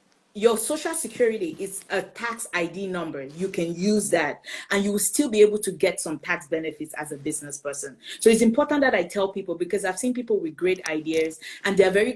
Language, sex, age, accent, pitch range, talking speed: English, female, 30-49, Nigerian, 175-240 Hz, 215 wpm